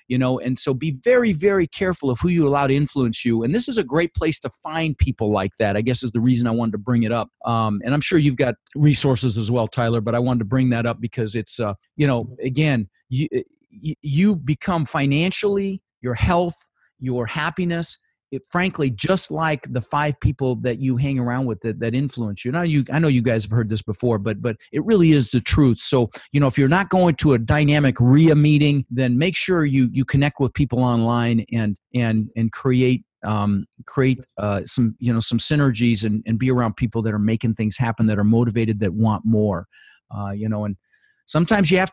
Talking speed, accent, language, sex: 225 wpm, American, English, male